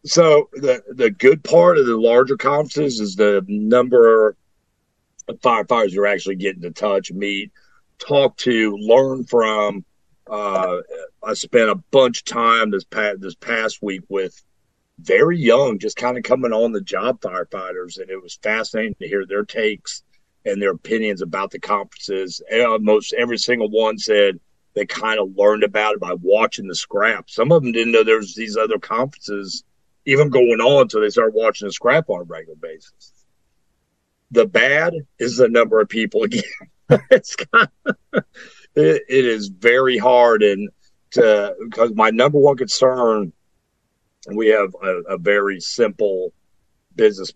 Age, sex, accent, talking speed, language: 50-69, male, American, 165 wpm, English